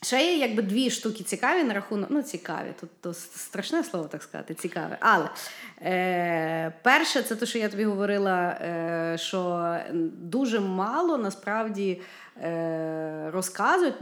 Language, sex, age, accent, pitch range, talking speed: Ukrainian, female, 30-49, native, 175-235 Hz, 135 wpm